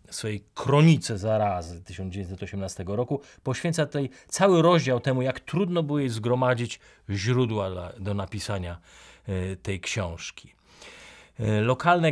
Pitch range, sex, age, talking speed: 100-135 Hz, male, 30-49, 105 wpm